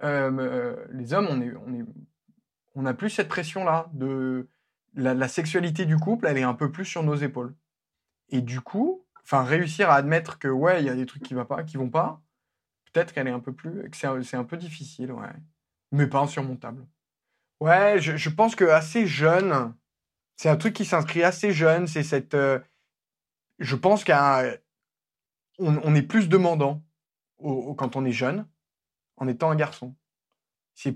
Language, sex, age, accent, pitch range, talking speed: French, male, 20-39, French, 130-160 Hz, 180 wpm